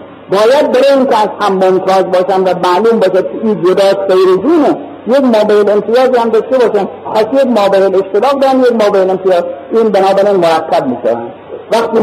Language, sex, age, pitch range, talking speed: Persian, male, 50-69, 195-270 Hz, 100 wpm